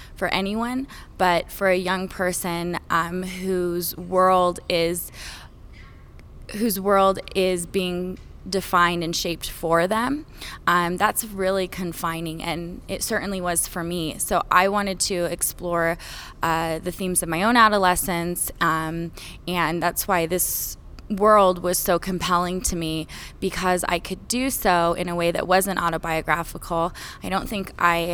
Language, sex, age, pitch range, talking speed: English, female, 20-39, 175-210 Hz, 145 wpm